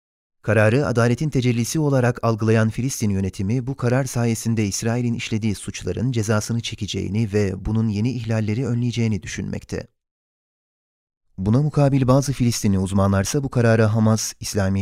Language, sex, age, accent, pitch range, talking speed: Turkish, male, 30-49, native, 105-120 Hz, 120 wpm